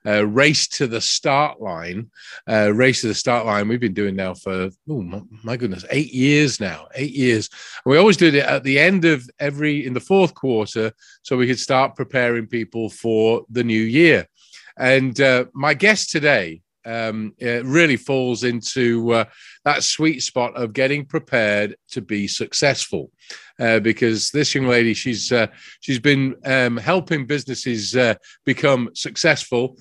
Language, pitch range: English, 120-155 Hz